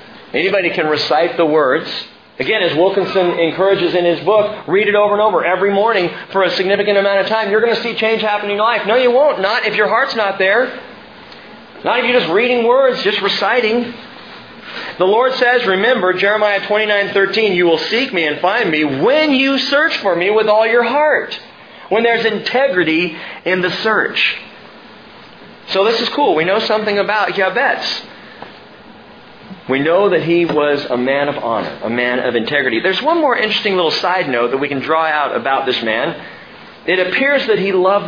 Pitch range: 180-225 Hz